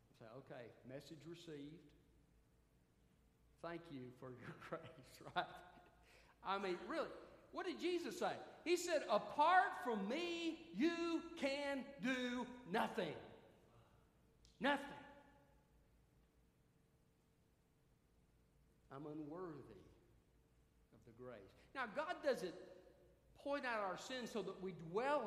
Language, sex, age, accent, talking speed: English, male, 50-69, American, 100 wpm